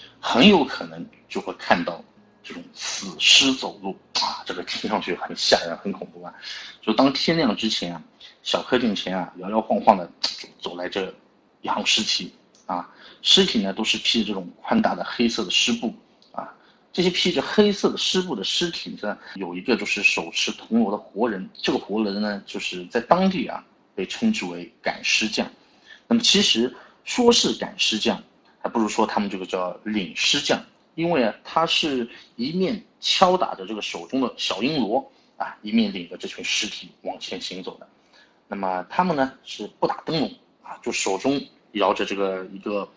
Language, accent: Chinese, native